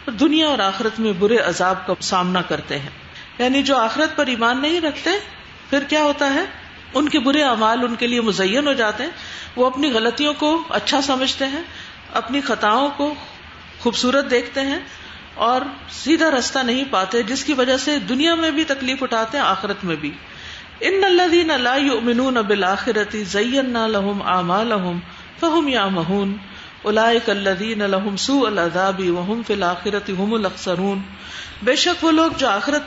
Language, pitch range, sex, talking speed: Urdu, 195-280 Hz, female, 165 wpm